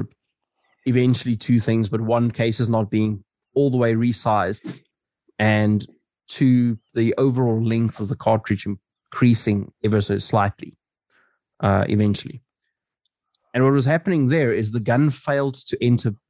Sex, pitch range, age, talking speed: male, 105-120 Hz, 30-49, 140 wpm